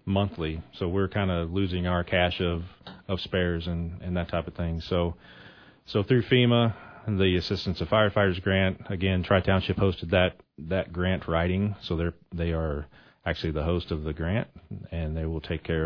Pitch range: 80-95 Hz